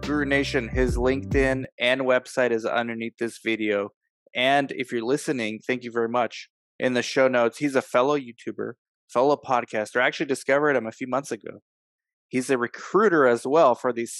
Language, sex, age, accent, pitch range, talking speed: English, male, 20-39, American, 110-135 Hz, 180 wpm